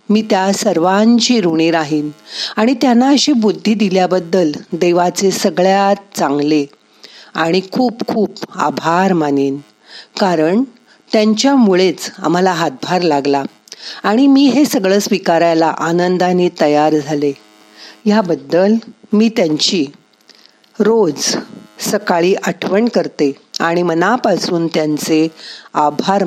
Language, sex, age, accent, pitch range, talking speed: Marathi, female, 40-59, native, 160-215 Hz, 95 wpm